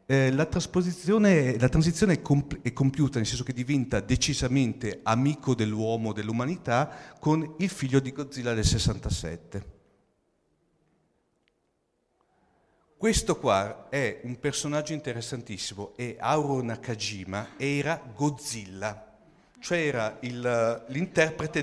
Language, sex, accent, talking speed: Italian, male, native, 110 wpm